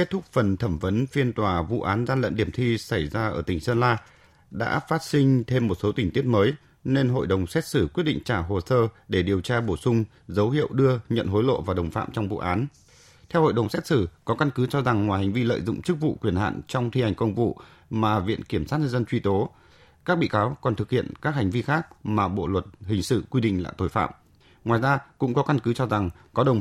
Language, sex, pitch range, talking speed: Vietnamese, male, 100-135 Hz, 265 wpm